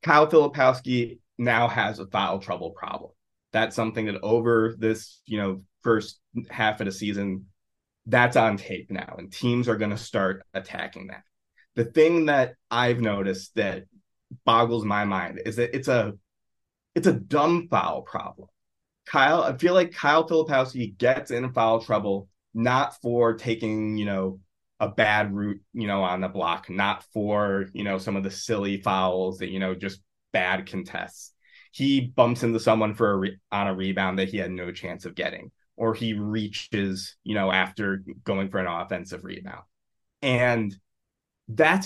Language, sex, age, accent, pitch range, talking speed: English, male, 20-39, American, 100-125 Hz, 170 wpm